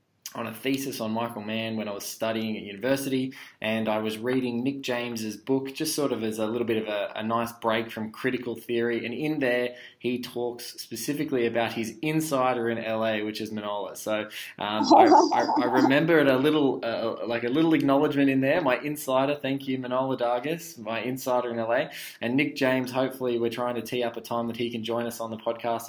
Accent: Australian